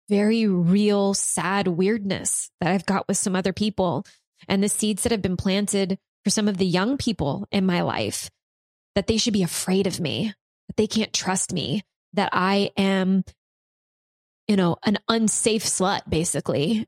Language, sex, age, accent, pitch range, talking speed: English, female, 20-39, American, 195-270 Hz, 170 wpm